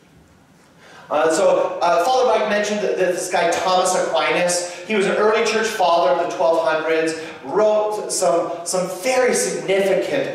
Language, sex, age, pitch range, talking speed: English, male, 40-59, 170-220 Hz, 140 wpm